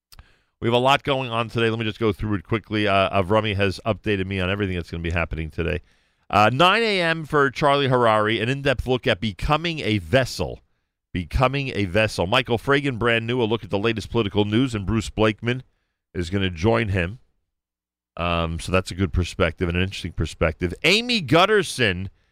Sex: male